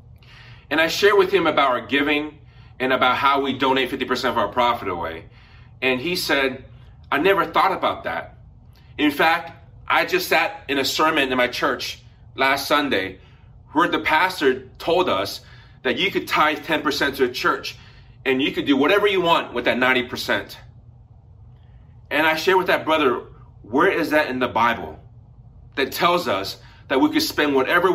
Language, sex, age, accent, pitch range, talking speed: English, male, 30-49, American, 120-165 Hz, 175 wpm